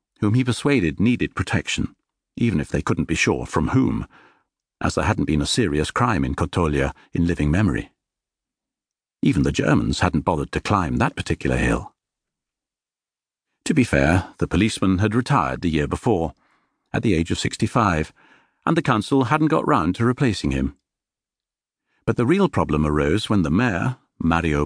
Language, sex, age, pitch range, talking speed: English, male, 60-79, 85-125 Hz, 165 wpm